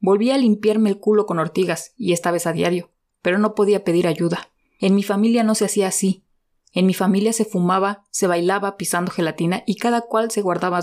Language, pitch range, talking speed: Spanish, 185-220 Hz, 210 wpm